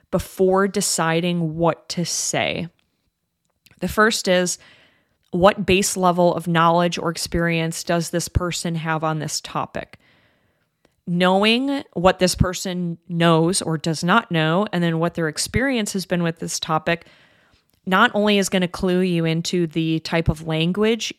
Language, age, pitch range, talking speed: English, 30-49, 165-190 Hz, 150 wpm